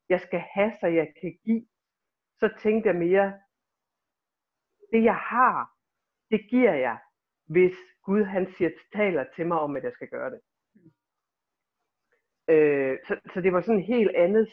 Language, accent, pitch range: Danish, native, 150-210 Hz